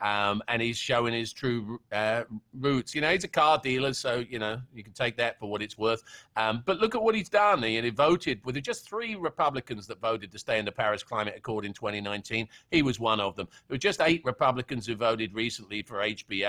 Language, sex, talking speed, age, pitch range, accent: English, male, 245 wpm, 50-69, 105-135 Hz, British